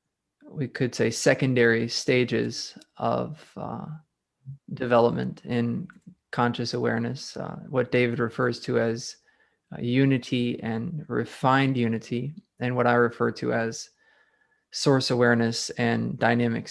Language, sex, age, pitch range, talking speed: English, male, 20-39, 115-135 Hz, 110 wpm